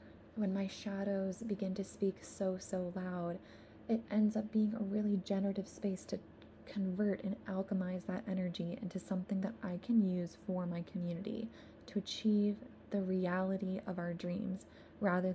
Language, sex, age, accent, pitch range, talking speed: English, female, 20-39, American, 175-200 Hz, 155 wpm